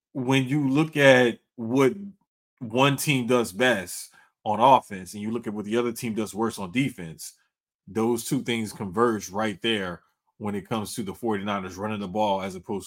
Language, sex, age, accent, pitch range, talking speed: English, male, 30-49, American, 115-145 Hz, 185 wpm